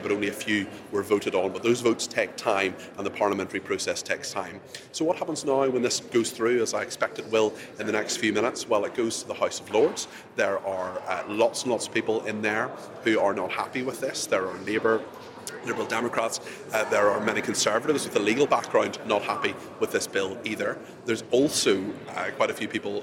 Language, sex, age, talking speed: English, male, 30-49, 230 wpm